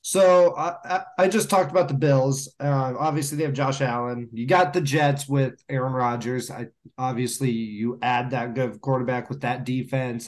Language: English